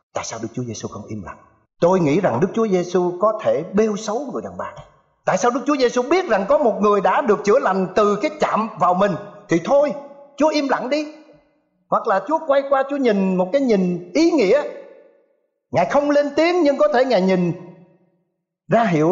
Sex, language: male, Thai